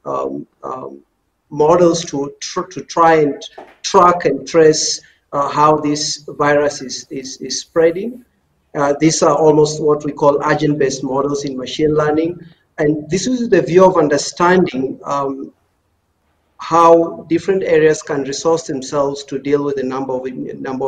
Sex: male